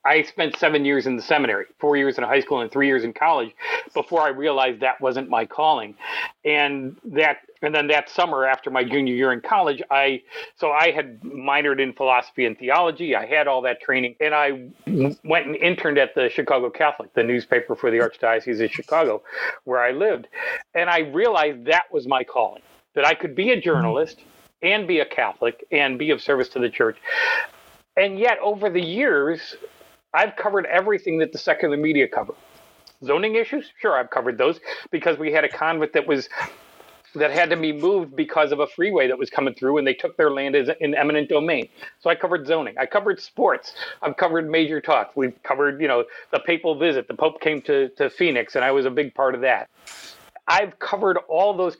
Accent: American